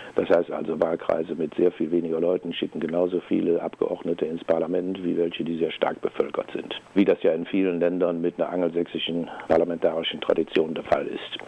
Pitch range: 85-95 Hz